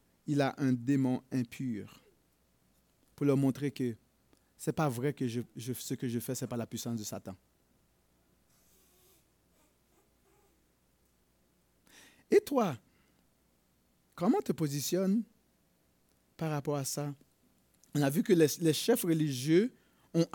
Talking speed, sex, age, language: 125 wpm, male, 50-69, French